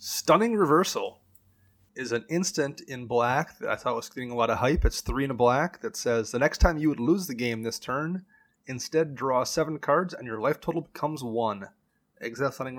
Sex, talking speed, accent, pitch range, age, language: male, 210 wpm, American, 115-140 Hz, 30-49, English